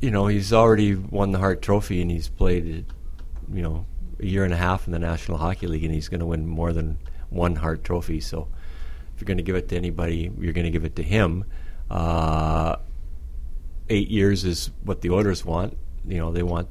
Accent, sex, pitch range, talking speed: American, male, 80-95 Hz, 220 wpm